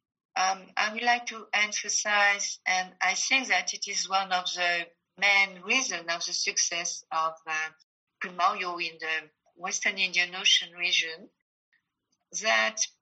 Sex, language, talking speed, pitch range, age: female, English, 140 wpm, 170-200 Hz, 50-69